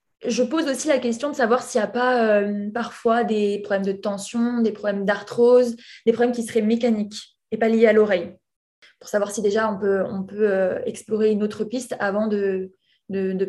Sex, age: female, 20-39